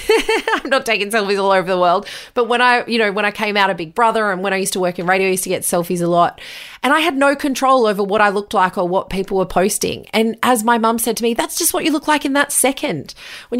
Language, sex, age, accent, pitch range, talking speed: English, female, 30-49, Australian, 190-245 Hz, 295 wpm